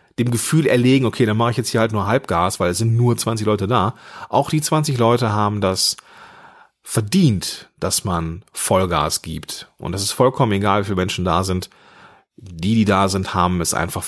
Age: 40-59